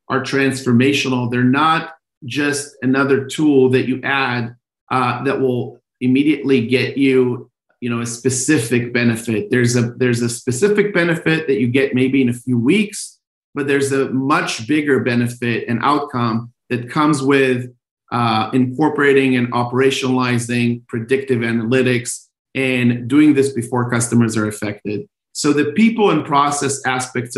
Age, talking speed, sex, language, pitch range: 40-59, 140 wpm, male, English, 120-140 Hz